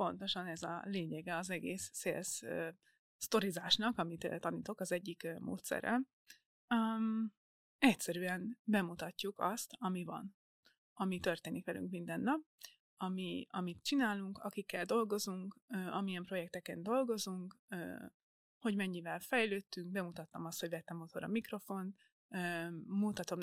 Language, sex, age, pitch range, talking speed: Hungarian, female, 20-39, 175-225 Hz, 105 wpm